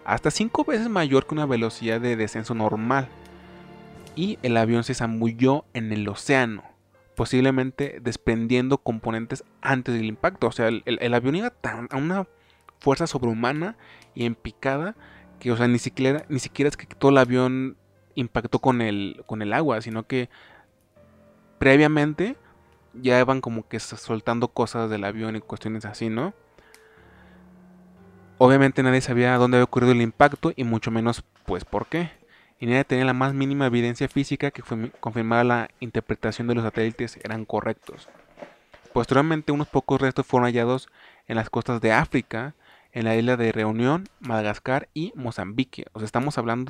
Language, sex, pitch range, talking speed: Spanish, male, 110-135 Hz, 160 wpm